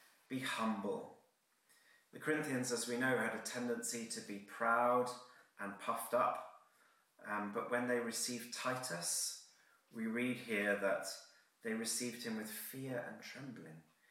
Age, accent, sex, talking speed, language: 30-49, British, male, 140 wpm, English